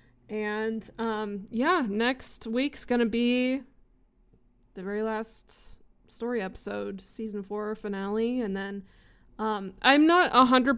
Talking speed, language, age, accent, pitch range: 130 wpm, English, 20-39, American, 195-240 Hz